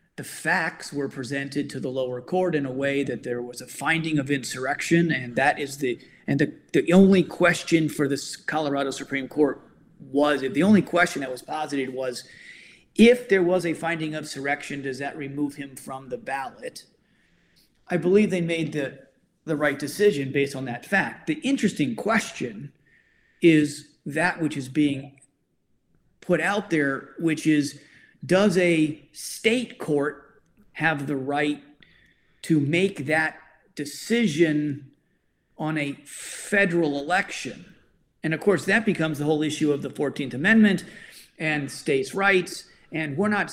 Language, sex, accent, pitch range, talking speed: English, male, American, 140-180 Hz, 155 wpm